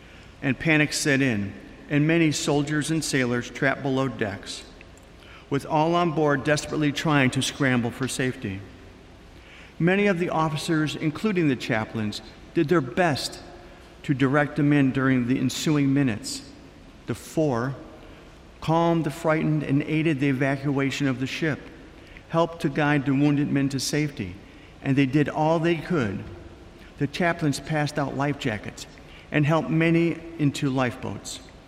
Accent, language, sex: American, English, male